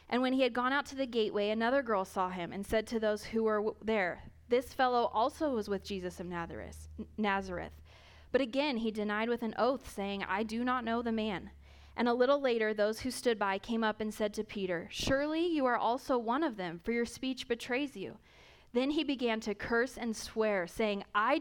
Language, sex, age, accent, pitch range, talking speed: English, female, 20-39, American, 195-235 Hz, 215 wpm